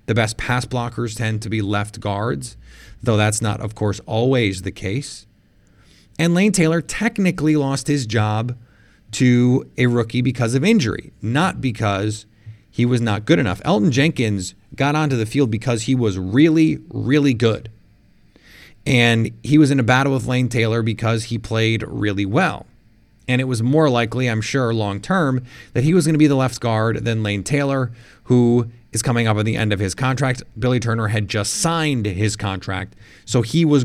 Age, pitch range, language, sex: 30-49, 110-135 Hz, English, male